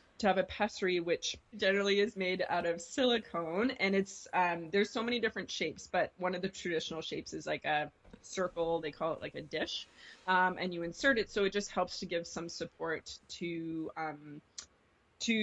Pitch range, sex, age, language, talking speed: 170-195 Hz, female, 20-39, English, 200 wpm